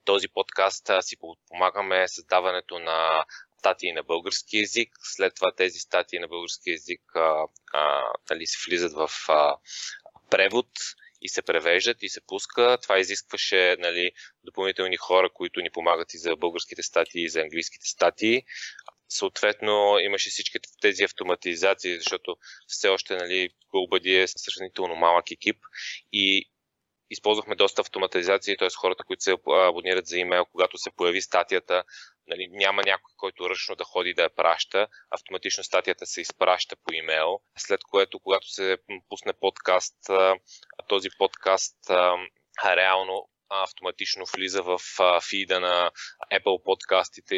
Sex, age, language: male, 20-39, Bulgarian